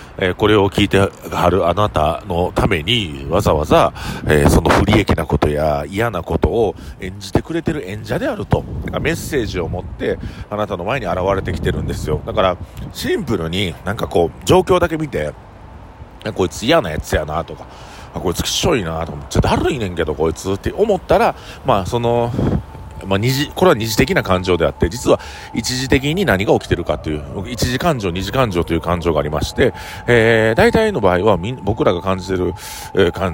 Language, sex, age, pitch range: Japanese, male, 40-59, 80-115 Hz